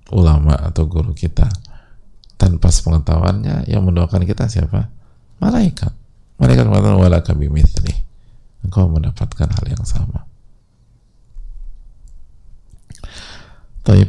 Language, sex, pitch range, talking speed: English, male, 85-95 Hz, 90 wpm